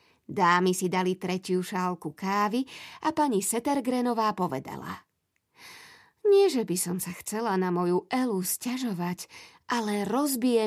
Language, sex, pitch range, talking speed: Slovak, female, 195-300 Hz, 125 wpm